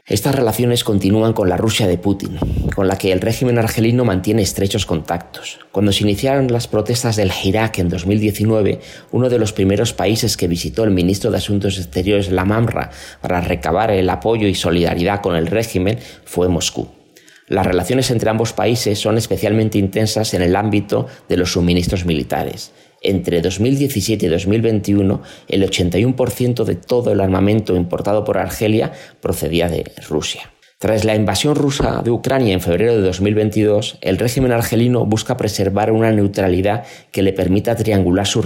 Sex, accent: male, Spanish